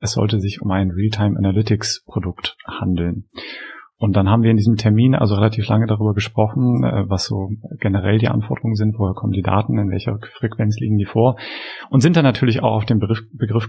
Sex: male